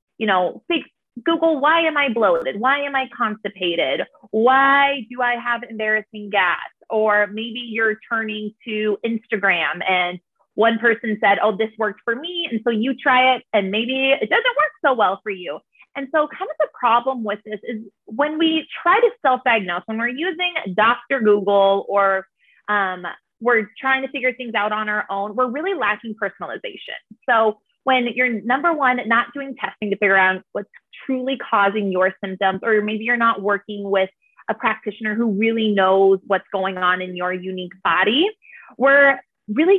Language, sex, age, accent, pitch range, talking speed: English, female, 20-39, American, 200-265 Hz, 175 wpm